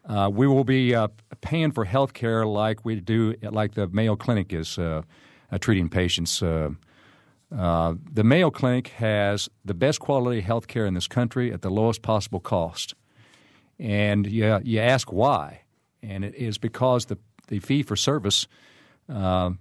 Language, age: English, 50-69